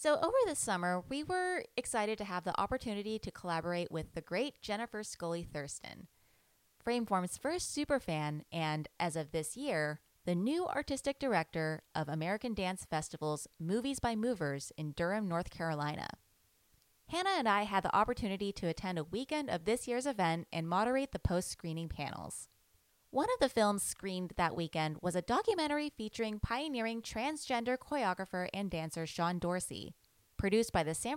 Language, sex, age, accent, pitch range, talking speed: English, female, 20-39, American, 165-250 Hz, 160 wpm